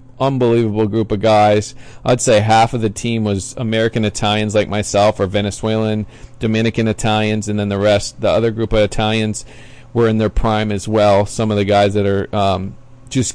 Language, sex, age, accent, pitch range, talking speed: English, male, 40-59, American, 100-125 Hz, 190 wpm